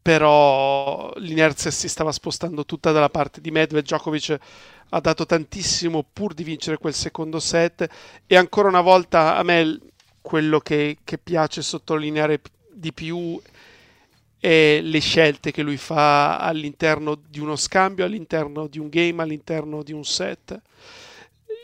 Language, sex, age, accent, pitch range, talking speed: Italian, male, 50-69, native, 150-185 Hz, 140 wpm